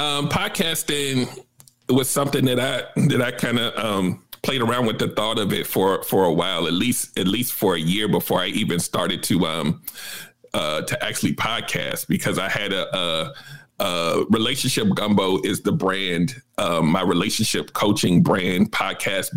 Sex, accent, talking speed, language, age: male, American, 170 wpm, English, 40-59